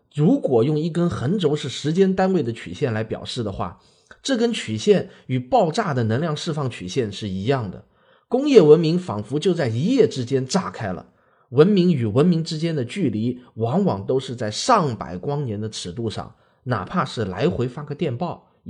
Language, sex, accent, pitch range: Chinese, male, native, 115-180 Hz